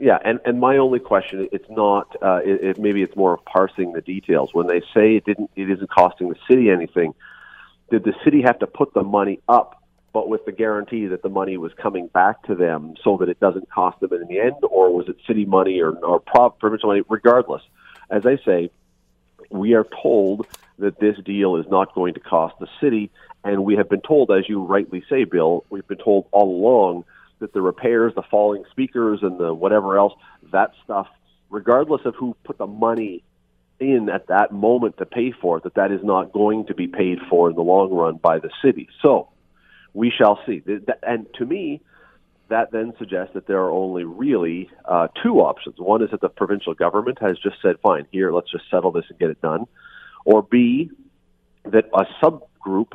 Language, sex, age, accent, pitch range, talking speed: English, male, 40-59, American, 95-110 Hz, 205 wpm